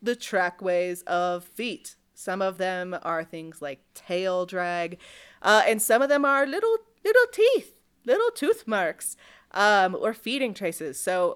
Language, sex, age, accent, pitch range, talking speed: English, female, 30-49, American, 170-230 Hz, 155 wpm